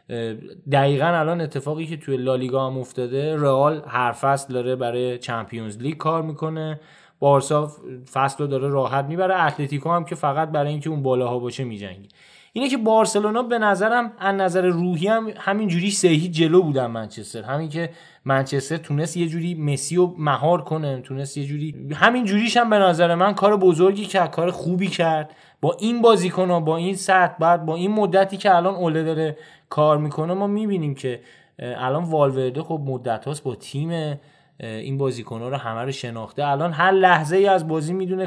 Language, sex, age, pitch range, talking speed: Persian, male, 20-39, 140-185 Hz, 175 wpm